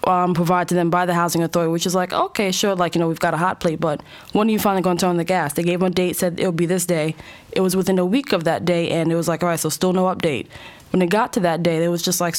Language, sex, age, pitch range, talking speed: English, female, 20-39, 170-195 Hz, 345 wpm